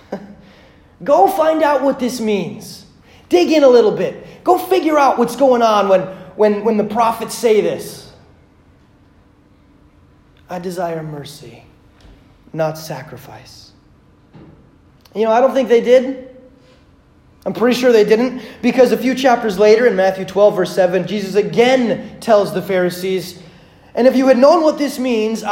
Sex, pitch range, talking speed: male, 135-225 Hz, 150 wpm